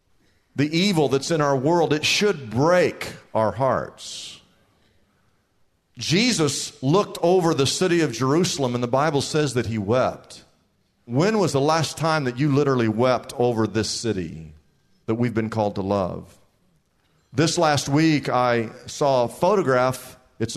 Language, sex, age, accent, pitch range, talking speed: English, male, 50-69, American, 105-140 Hz, 150 wpm